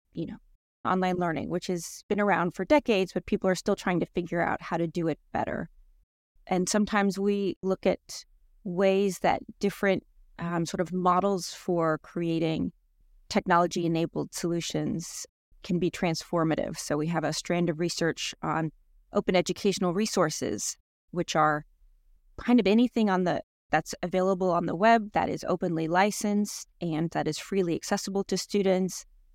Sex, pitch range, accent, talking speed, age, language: female, 170-200 Hz, American, 155 wpm, 20-39, English